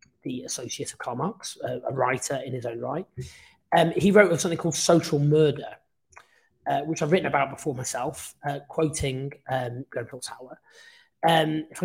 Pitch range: 135-165 Hz